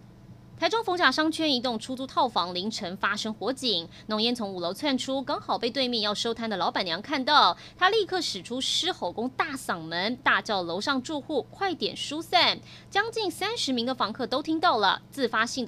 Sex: female